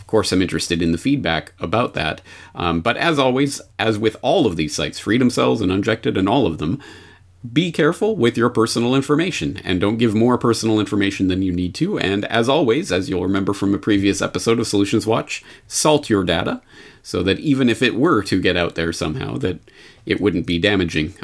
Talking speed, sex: 210 wpm, male